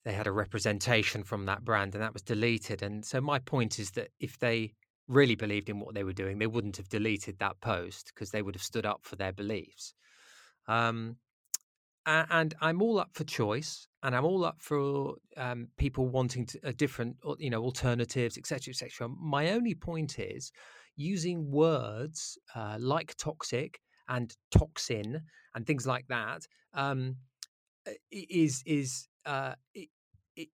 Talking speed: 170 wpm